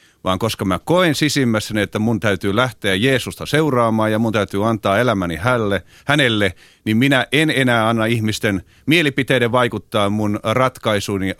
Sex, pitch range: male, 110-140 Hz